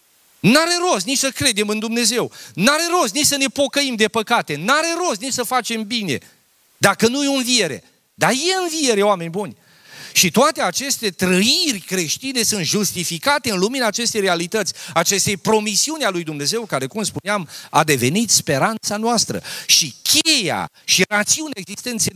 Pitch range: 160-225 Hz